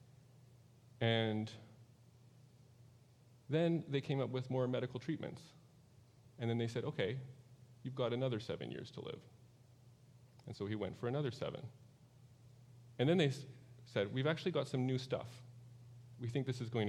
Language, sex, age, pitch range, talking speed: English, male, 30-49, 120-130 Hz, 155 wpm